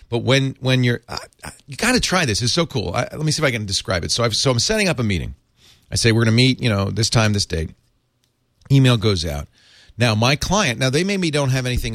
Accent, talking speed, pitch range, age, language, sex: American, 270 wpm, 100-135 Hz, 40-59, English, male